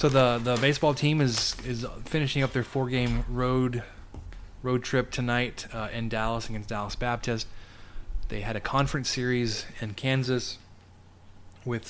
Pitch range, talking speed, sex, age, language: 100-125 Hz, 150 wpm, male, 20-39, English